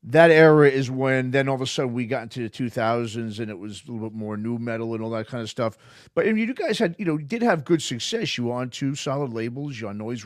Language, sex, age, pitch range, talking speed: English, male, 40-59, 110-135 Hz, 300 wpm